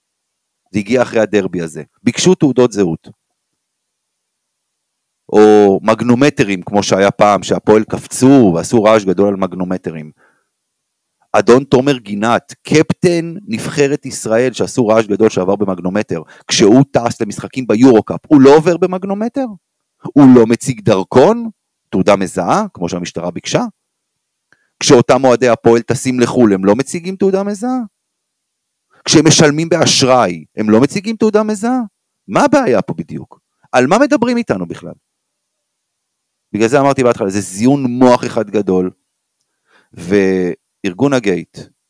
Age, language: 30-49, Hebrew